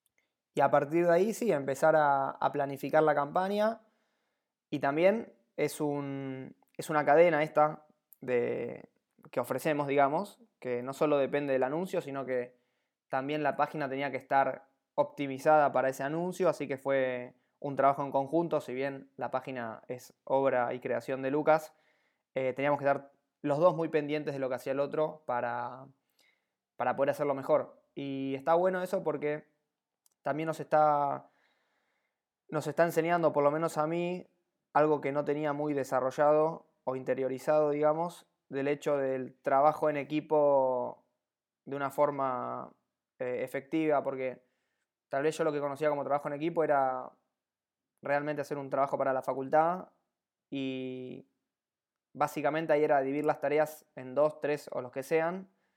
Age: 20-39